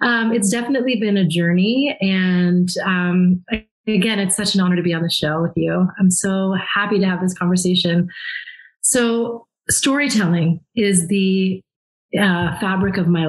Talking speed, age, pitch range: 160 wpm, 30-49, 180-215 Hz